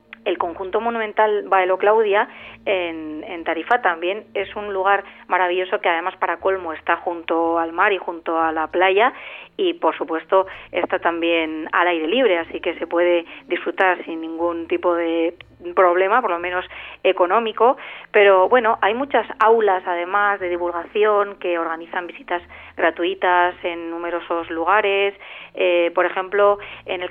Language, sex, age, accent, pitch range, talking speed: Spanish, female, 30-49, Spanish, 175-200 Hz, 150 wpm